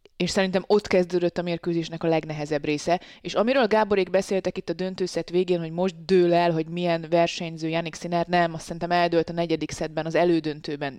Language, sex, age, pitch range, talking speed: Hungarian, female, 20-39, 160-185 Hz, 195 wpm